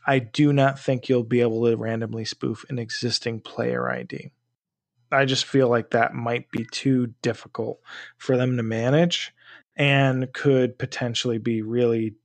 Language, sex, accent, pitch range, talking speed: English, male, American, 120-145 Hz, 155 wpm